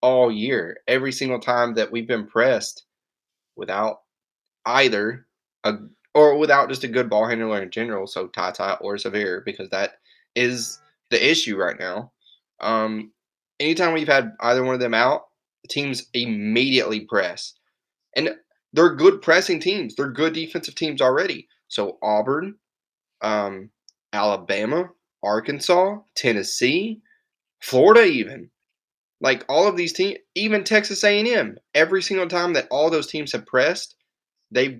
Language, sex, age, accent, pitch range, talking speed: English, male, 20-39, American, 115-160 Hz, 145 wpm